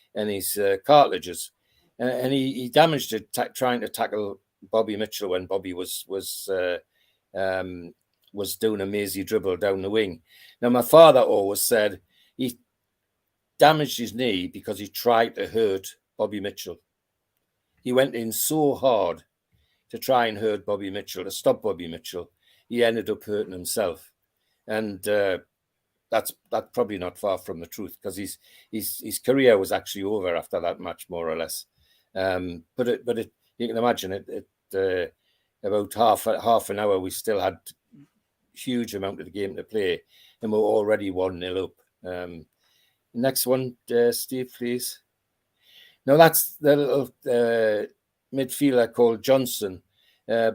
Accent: British